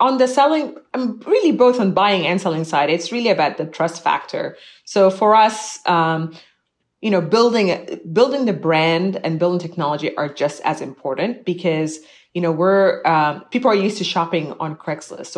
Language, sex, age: English, female, 30-49